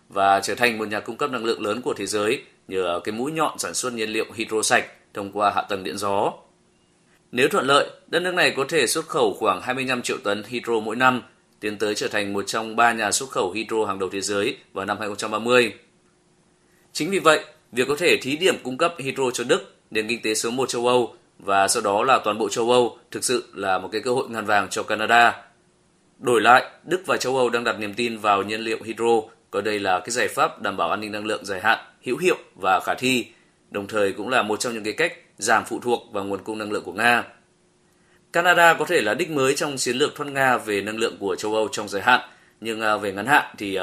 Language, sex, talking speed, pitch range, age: Vietnamese, male, 245 wpm, 105-125 Hz, 20-39